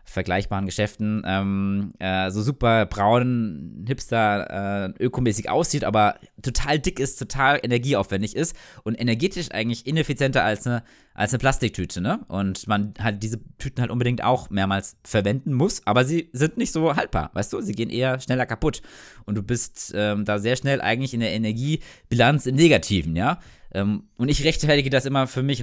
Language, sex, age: German, male, 20-39